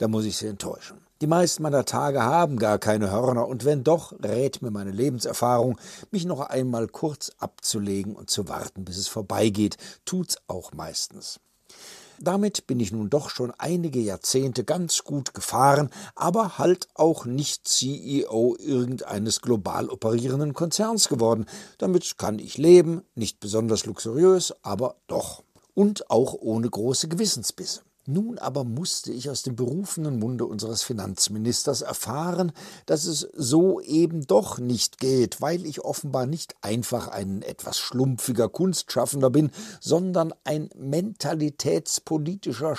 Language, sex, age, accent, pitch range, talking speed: German, male, 60-79, German, 115-165 Hz, 140 wpm